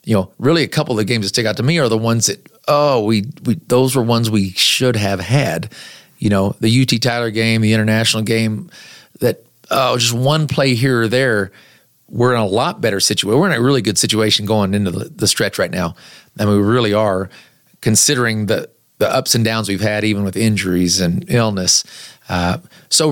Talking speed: 215 wpm